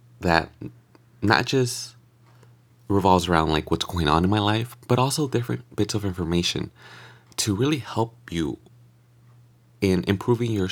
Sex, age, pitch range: male, 20-39, 90-120 Hz